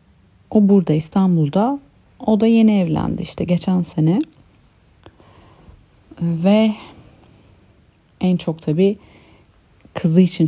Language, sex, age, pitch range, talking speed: Turkish, female, 40-59, 155-195 Hz, 90 wpm